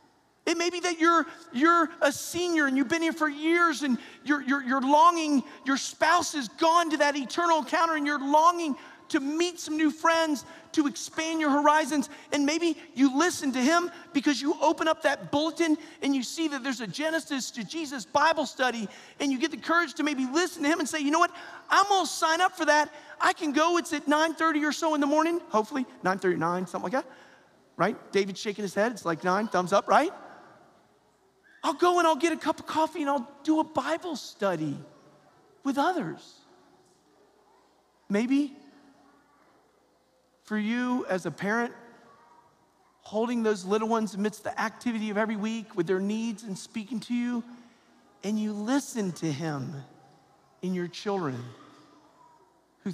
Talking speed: 180 wpm